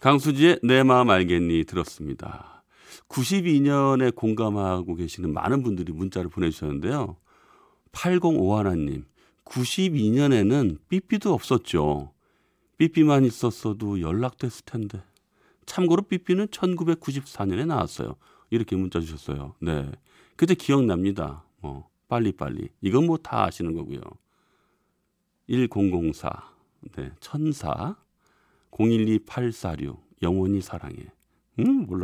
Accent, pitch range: native, 90-140 Hz